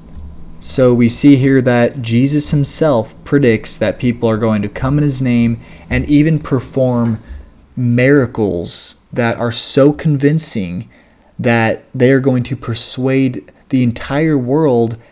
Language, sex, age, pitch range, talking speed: English, male, 20-39, 110-130 Hz, 130 wpm